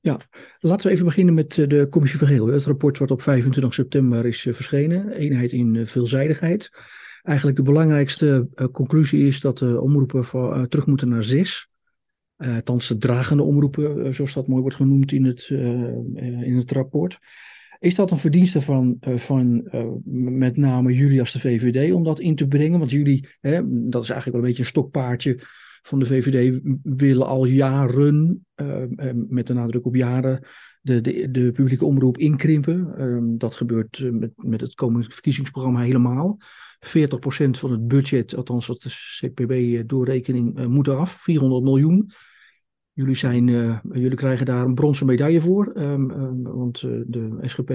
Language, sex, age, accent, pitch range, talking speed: Dutch, male, 50-69, Dutch, 125-145 Hz, 165 wpm